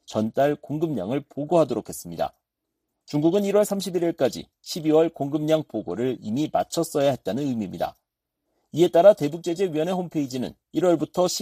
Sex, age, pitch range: male, 40-59, 145-180 Hz